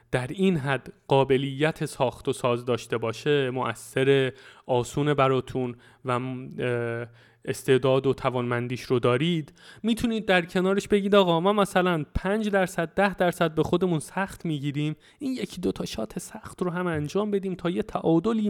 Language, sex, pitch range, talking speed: Persian, male, 125-175 Hz, 150 wpm